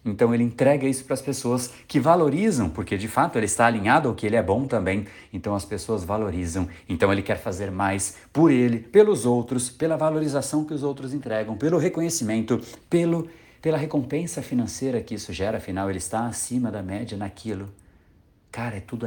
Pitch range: 90-135 Hz